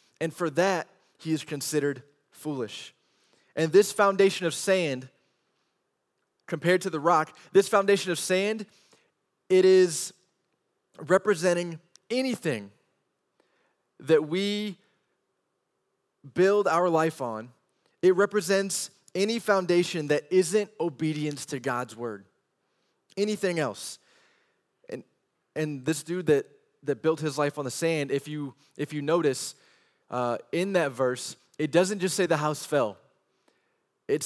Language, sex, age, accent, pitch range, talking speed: English, male, 20-39, American, 145-185 Hz, 125 wpm